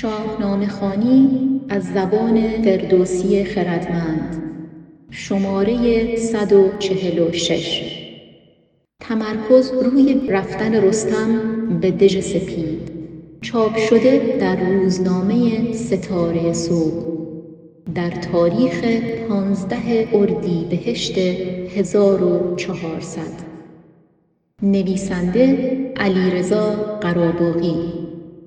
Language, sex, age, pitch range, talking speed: Persian, female, 30-49, 175-225 Hz, 65 wpm